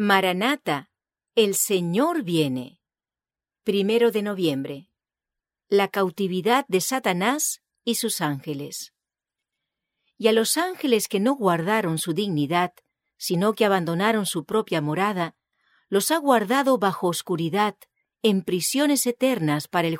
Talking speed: 115 wpm